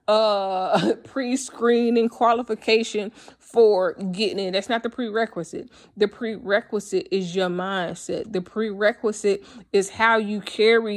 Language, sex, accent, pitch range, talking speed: English, female, American, 195-235 Hz, 115 wpm